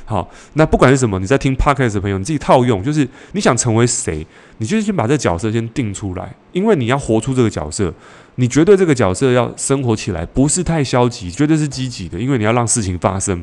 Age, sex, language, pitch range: 20-39, male, Chinese, 100-135 Hz